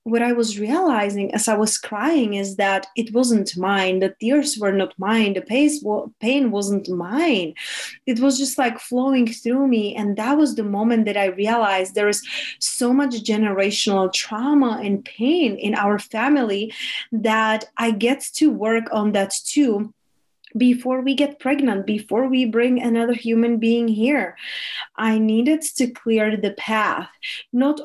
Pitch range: 205-255 Hz